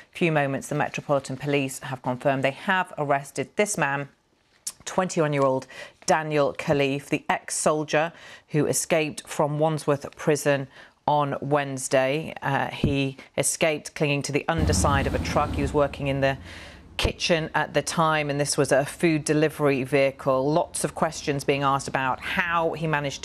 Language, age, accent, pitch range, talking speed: English, 40-59, British, 135-160 Hz, 150 wpm